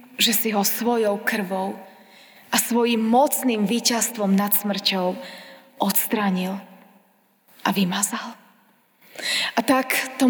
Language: Slovak